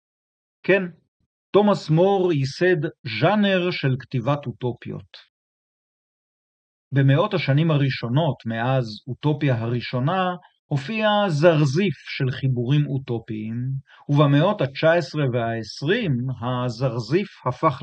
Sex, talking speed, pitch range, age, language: male, 80 wpm, 125-165 Hz, 50-69, Hebrew